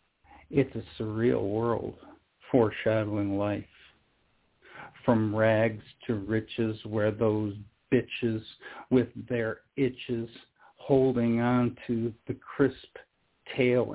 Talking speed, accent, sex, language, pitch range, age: 95 wpm, American, male, English, 110-120 Hz, 50-69